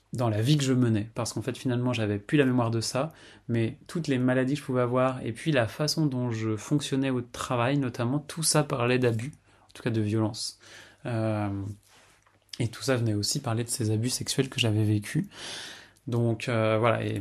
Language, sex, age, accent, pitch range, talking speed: French, male, 20-39, French, 110-135 Hz, 215 wpm